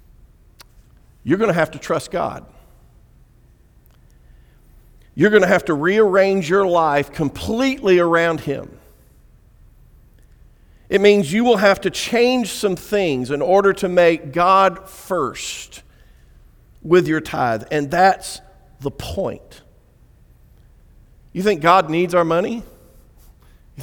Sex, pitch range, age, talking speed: male, 140-200 Hz, 50-69, 120 wpm